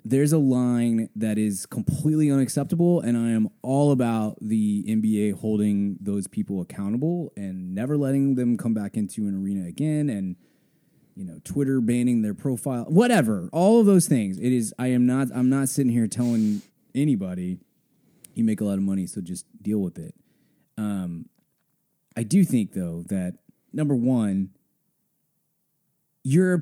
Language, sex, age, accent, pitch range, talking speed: English, male, 20-39, American, 105-155 Hz, 160 wpm